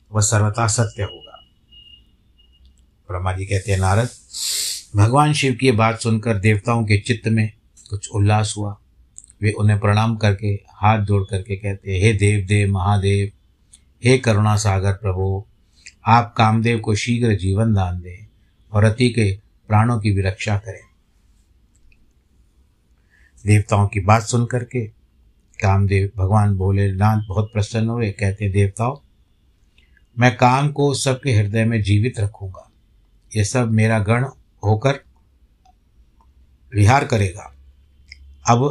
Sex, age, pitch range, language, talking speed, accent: male, 60-79, 95-110 Hz, Hindi, 130 wpm, native